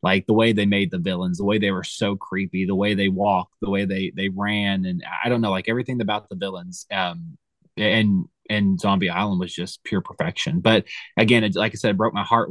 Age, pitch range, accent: 20-39, 100-130 Hz, American